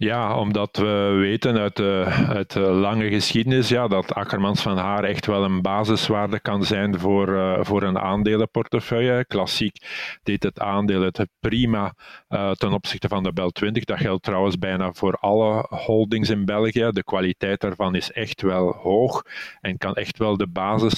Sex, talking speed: male, 175 wpm